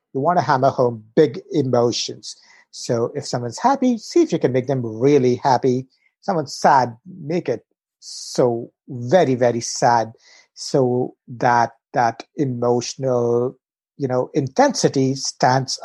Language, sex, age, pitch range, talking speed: English, male, 60-79, 125-155 Hz, 135 wpm